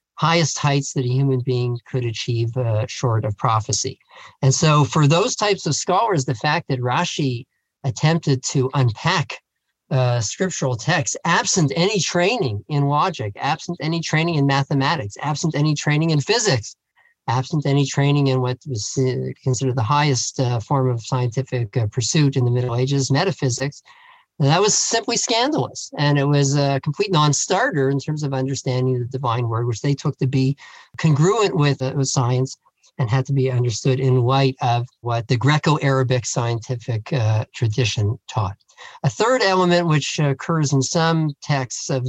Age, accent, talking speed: 50-69, American, 170 wpm